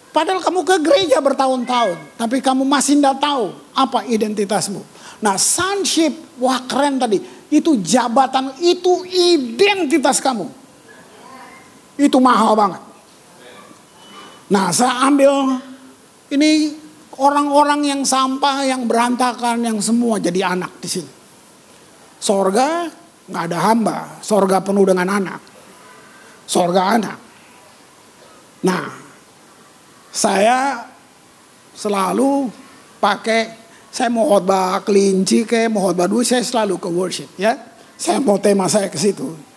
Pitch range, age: 195-265 Hz, 50-69